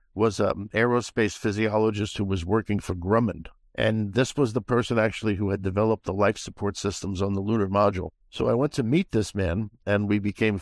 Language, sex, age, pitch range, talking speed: English, male, 50-69, 100-115 Hz, 205 wpm